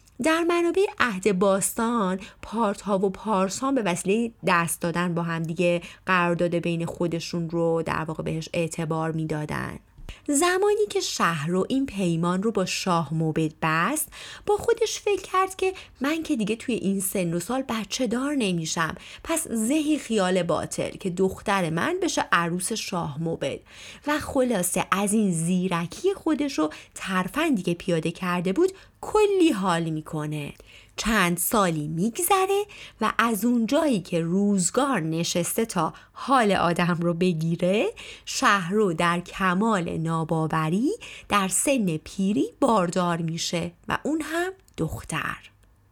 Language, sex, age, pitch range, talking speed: Persian, female, 30-49, 170-245 Hz, 140 wpm